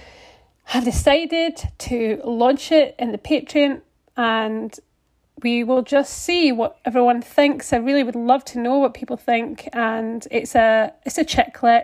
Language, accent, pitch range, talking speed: English, British, 230-270 Hz, 150 wpm